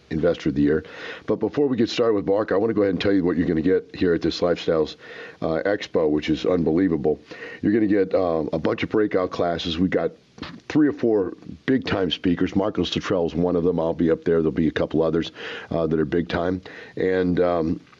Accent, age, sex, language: American, 50-69, male, English